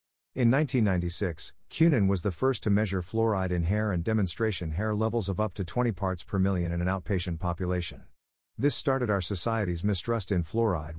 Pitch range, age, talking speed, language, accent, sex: 90-110 Hz, 50-69, 180 wpm, English, American, male